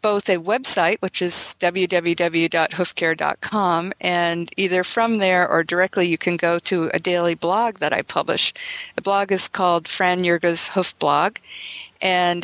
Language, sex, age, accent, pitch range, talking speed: English, female, 50-69, American, 170-200 Hz, 150 wpm